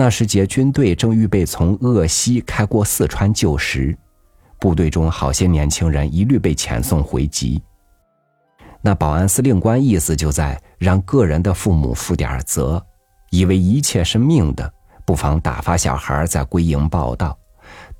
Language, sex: Chinese, male